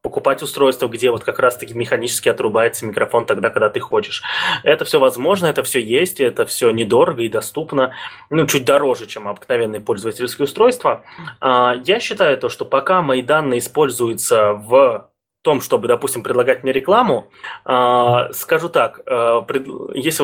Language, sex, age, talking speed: Russian, male, 20-39, 145 wpm